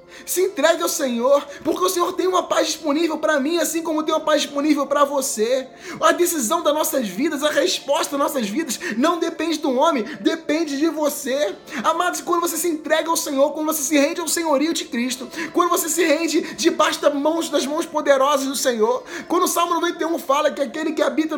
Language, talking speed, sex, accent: Portuguese, 205 wpm, male, Brazilian